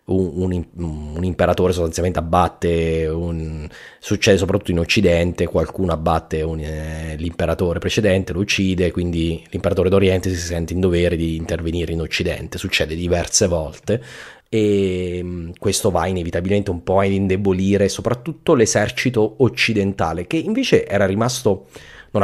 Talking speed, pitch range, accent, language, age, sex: 125 wpm, 85-105 Hz, native, Italian, 30-49, male